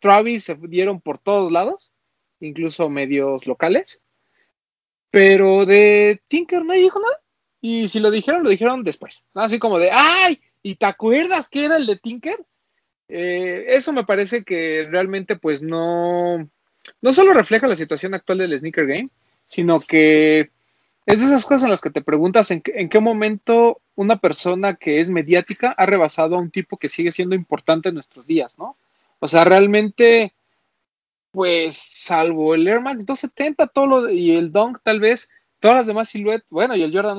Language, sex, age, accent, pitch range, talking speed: Spanish, male, 30-49, Mexican, 160-225 Hz, 175 wpm